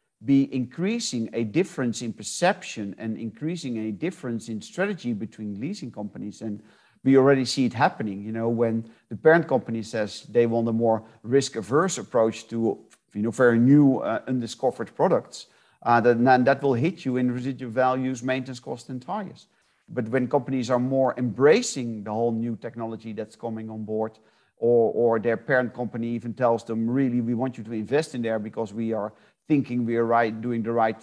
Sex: male